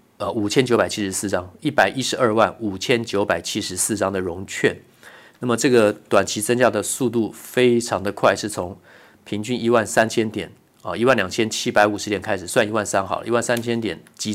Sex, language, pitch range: male, Chinese, 100-115 Hz